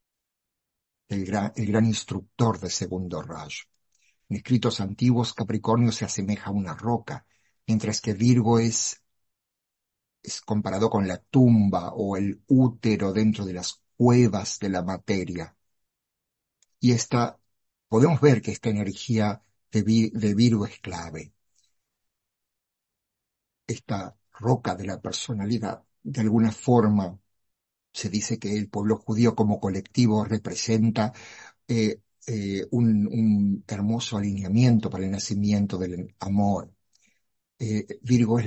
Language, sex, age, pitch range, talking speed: Spanish, male, 60-79, 100-115 Hz, 120 wpm